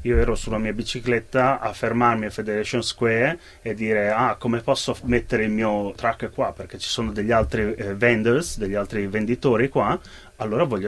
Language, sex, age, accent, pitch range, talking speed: Italian, male, 30-49, native, 105-130 Hz, 180 wpm